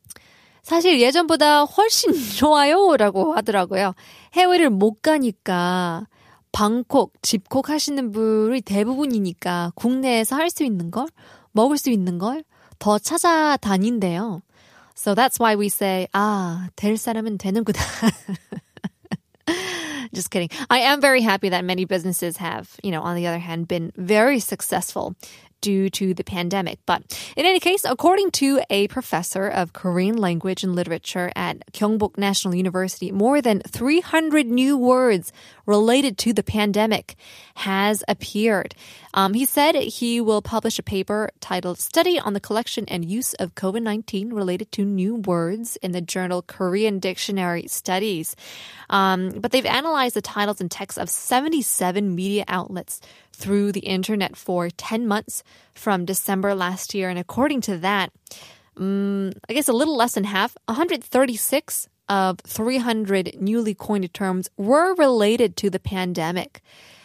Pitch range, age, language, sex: 185-250 Hz, 20-39, Korean, female